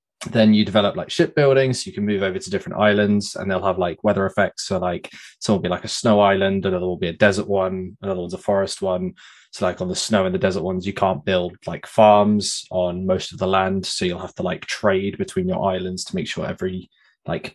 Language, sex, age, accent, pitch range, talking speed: English, male, 20-39, British, 95-120 Hz, 250 wpm